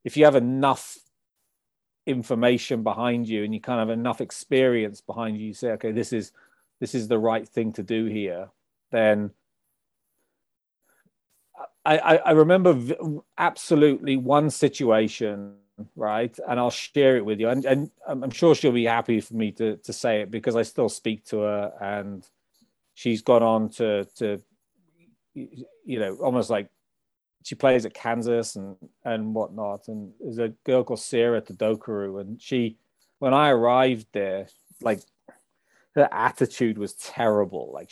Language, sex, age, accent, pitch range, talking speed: English, male, 40-59, British, 110-125 Hz, 155 wpm